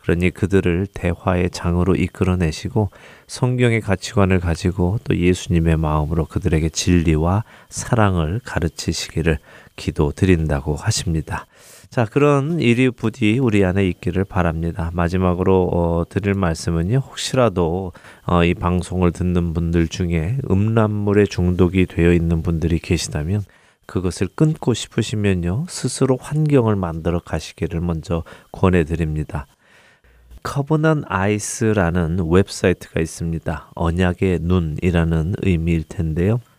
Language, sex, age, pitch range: Korean, male, 30-49, 85-110 Hz